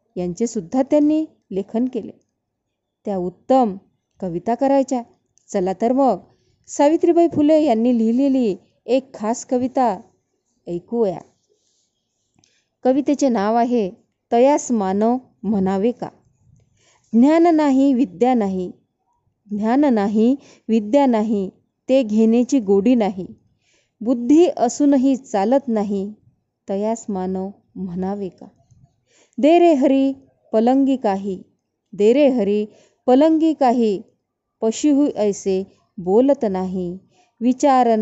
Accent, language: native, Marathi